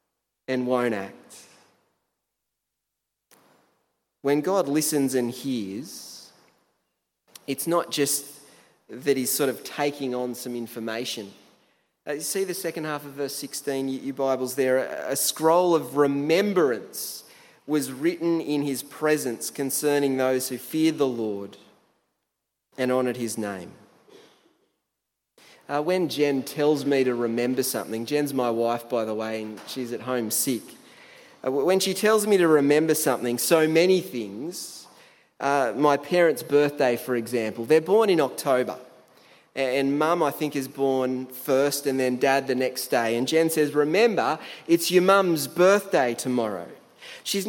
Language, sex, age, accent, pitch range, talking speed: English, male, 30-49, Australian, 125-165 Hz, 145 wpm